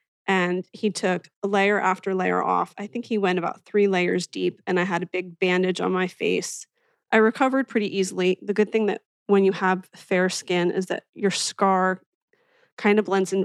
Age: 30-49